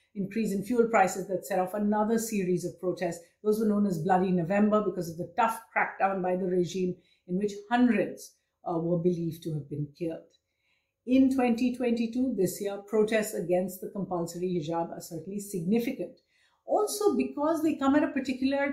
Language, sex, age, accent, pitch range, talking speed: English, female, 50-69, Indian, 185-245 Hz, 175 wpm